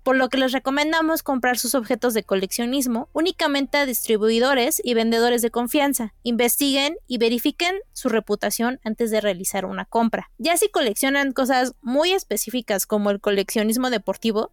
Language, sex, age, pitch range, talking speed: Spanish, female, 20-39, 220-280 Hz, 155 wpm